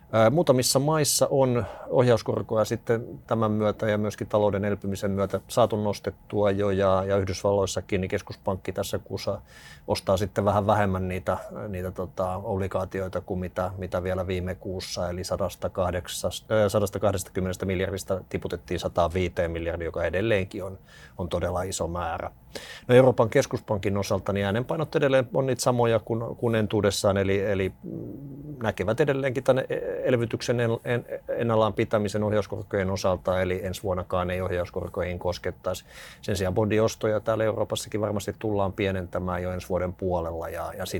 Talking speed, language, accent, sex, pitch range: 135 wpm, Finnish, native, male, 95-110 Hz